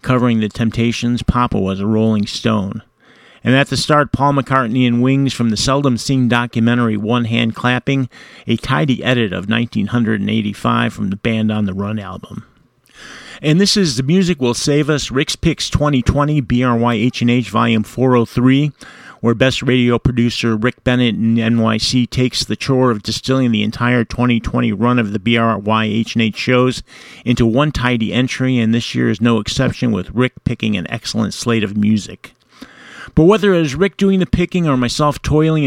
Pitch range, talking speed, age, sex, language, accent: 115-130 Hz, 180 wpm, 40-59, male, English, American